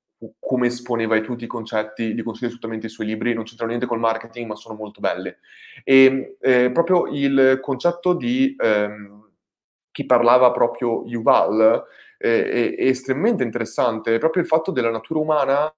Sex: male